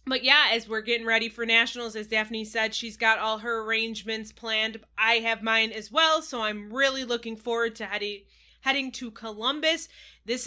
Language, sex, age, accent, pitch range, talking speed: English, female, 20-39, American, 210-260 Hz, 185 wpm